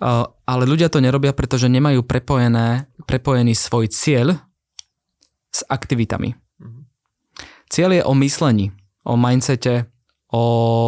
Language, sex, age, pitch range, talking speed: Slovak, male, 20-39, 115-130 Hz, 100 wpm